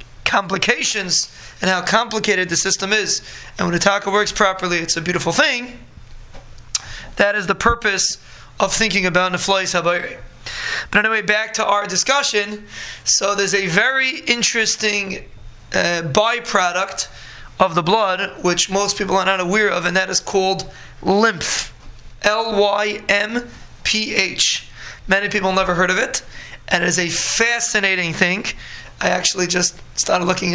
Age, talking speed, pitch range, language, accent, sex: 20-39, 145 wpm, 180-210 Hz, English, American, male